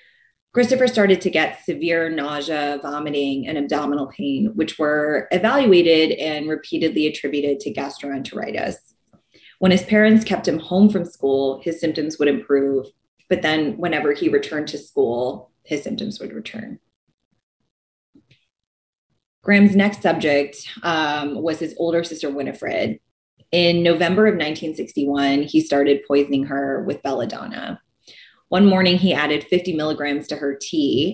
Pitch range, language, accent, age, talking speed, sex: 145-185 Hz, English, American, 20-39, 135 wpm, female